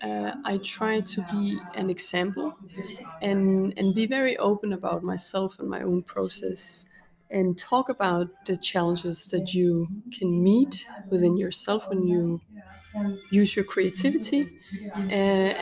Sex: female